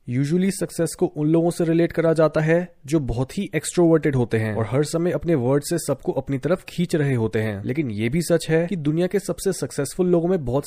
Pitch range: 140-180 Hz